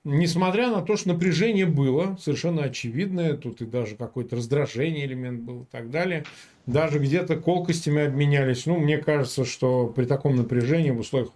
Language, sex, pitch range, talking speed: Russian, male, 120-165 Hz, 165 wpm